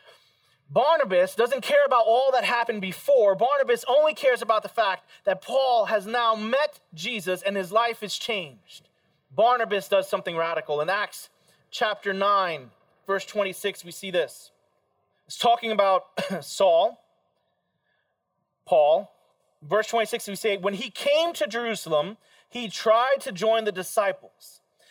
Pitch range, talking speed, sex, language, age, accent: 190-265 Hz, 140 wpm, male, English, 30-49, American